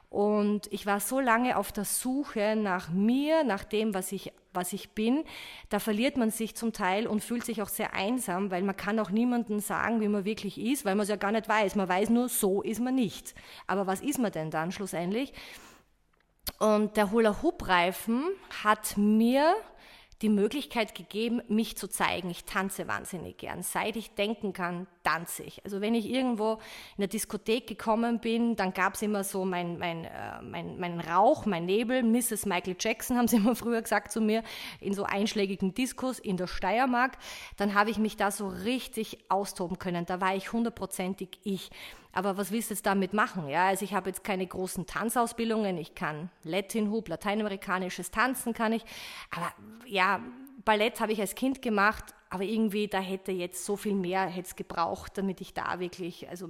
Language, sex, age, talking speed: German, female, 30-49, 190 wpm